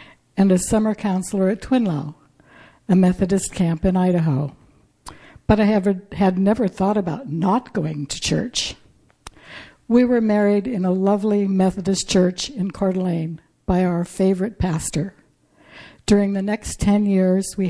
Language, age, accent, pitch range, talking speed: English, 60-79, American, 180-210 Hz, 140 wpm